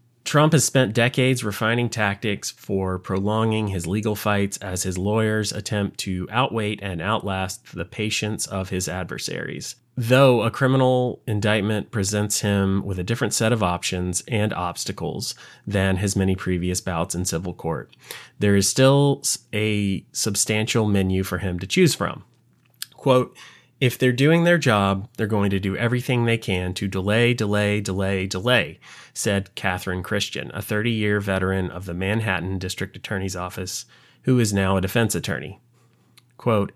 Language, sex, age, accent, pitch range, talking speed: English, male, 30-49, American, 95-120 Hz, 155 wpm